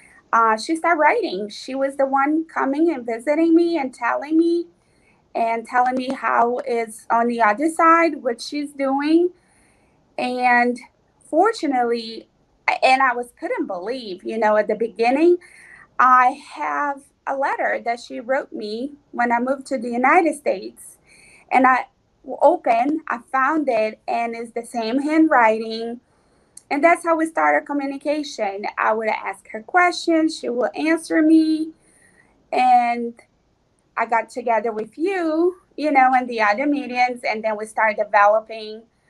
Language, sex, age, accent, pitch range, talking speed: English, female, 30-49, American, 215-295 Hz, 150 wpm